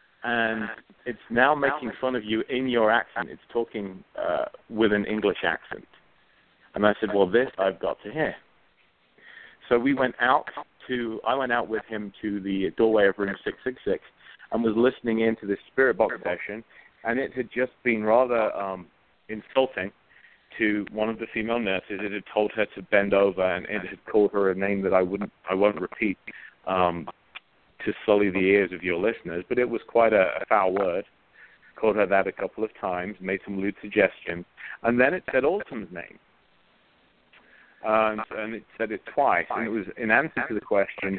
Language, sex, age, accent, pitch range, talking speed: English, male, 40-59, British, 100-115 Hz, 195 wpm